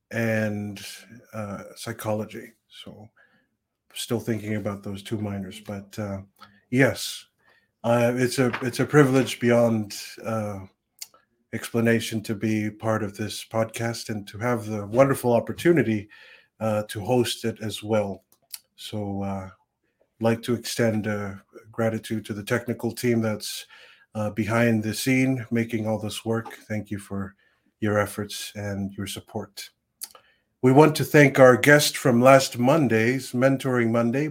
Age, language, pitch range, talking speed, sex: 50-69, English, 105-125 Hz, 140 wpm, male